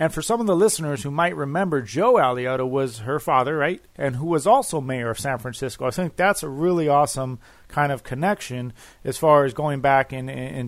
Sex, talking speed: male, 220 wpm